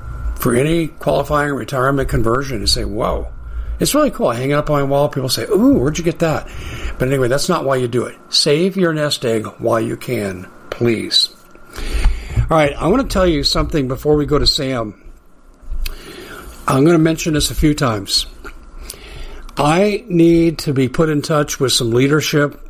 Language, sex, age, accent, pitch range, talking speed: English, male, 60-79, American, 125-170 Hz, 190 wpm